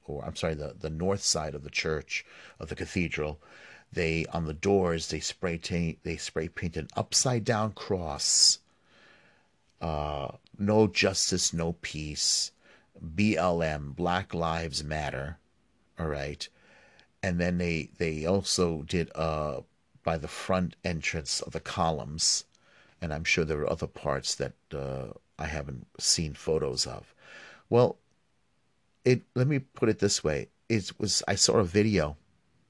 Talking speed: 145 wpm